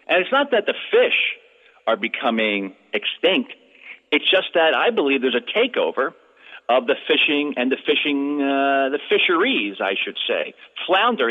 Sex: male